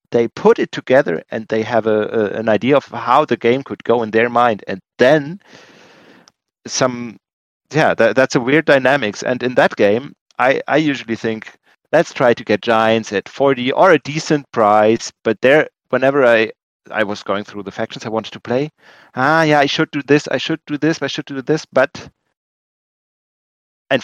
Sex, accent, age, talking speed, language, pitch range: male, German, 30-49, 195 wpm, English, 110-140 Hz